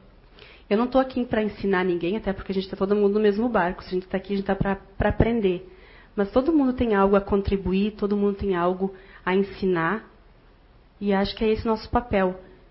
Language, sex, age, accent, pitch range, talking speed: Portuguese, female, 40-59, Brazilian, 185-210 Hz, 225 wpm